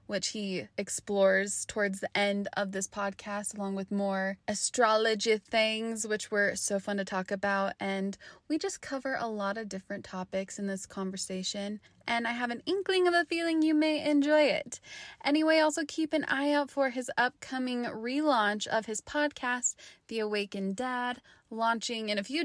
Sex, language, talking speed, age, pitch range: female, English, 175 wpm, 20-39, 205-265 Hz